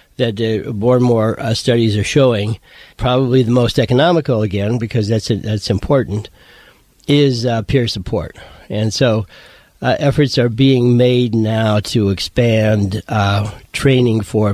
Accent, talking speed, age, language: American, 145 wpm, 40-59, English